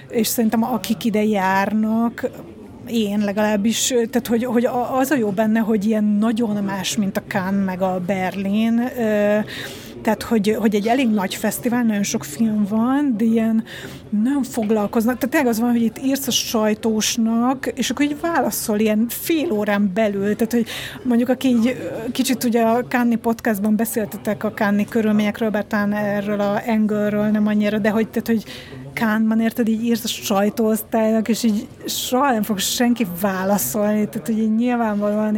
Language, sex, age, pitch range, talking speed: Hungarian, female, 30-49, 205-240 Hz, 165 wpm